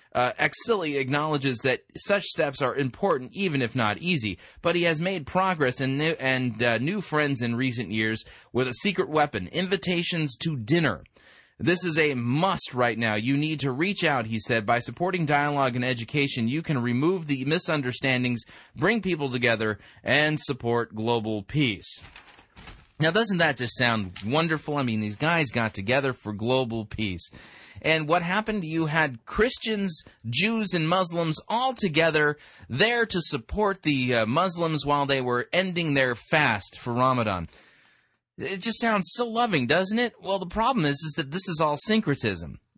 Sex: male